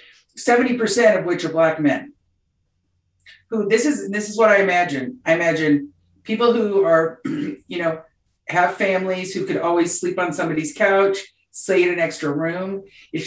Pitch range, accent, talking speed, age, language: 150-185 Hz, American, 165 wpm, 50-69, English